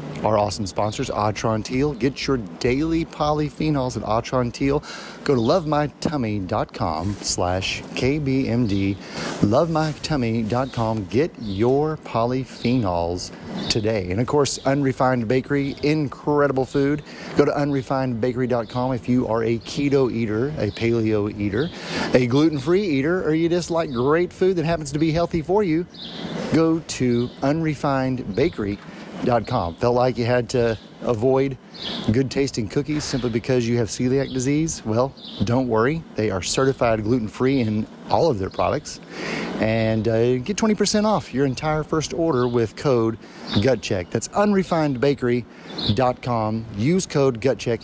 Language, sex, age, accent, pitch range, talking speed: English, male, 30-49, American, 110-150 Hz, 130 wpm